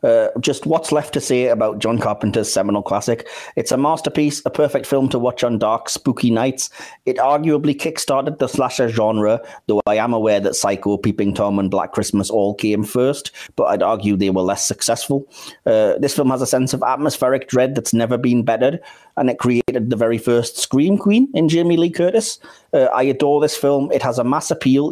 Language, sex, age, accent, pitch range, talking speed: English, male, 30-49, British, 110-145 Hz, 205 wpm